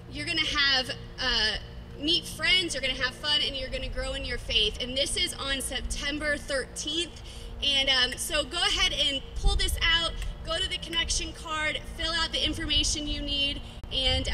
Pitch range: 225-285 Hz